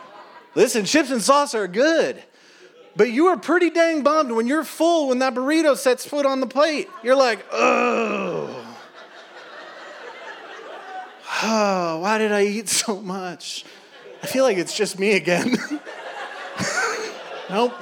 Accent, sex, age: American, male, 30-49